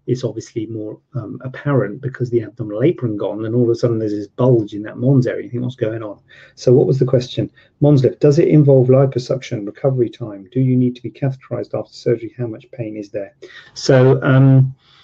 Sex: male